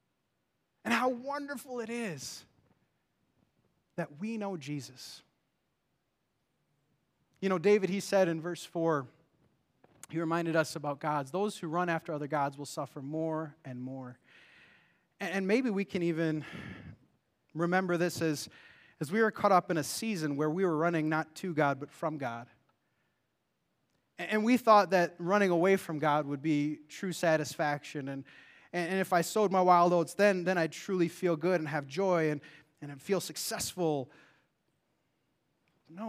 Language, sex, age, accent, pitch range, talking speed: English, male, 30-49, American, 150-200 Hz, 155 wpm